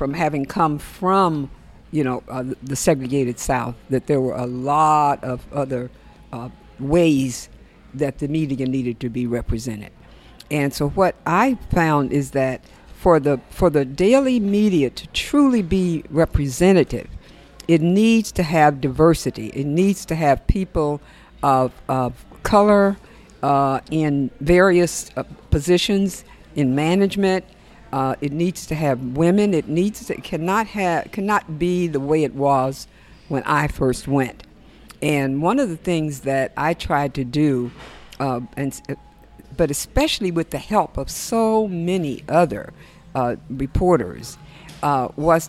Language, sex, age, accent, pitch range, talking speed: English, female, 60-79, American, 135-175 Hz, 145 wpm